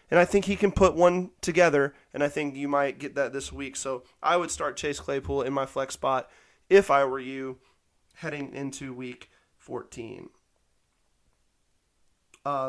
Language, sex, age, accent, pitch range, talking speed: English, male, 20-39, American, 140-160 Hz, 170 wpm